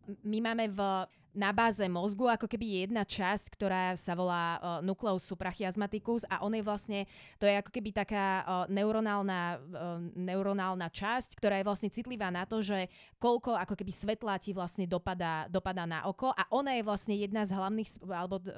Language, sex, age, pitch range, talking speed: Slovak, female, 20-39, 185-215 Hz, 160 wpm